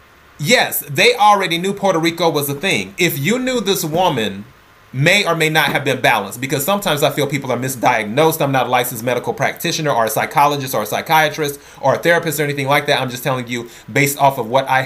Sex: male